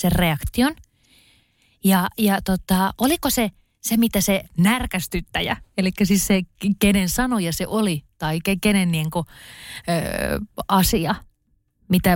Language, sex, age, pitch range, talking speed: Finnish, female, 30-49, 170-210 Hz, 120 wpm